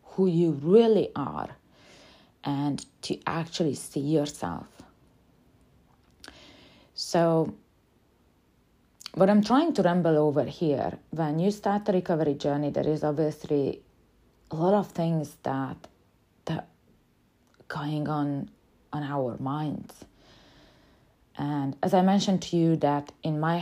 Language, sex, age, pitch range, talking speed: English, female, 30-49, 145-175 Hz, 115 wpm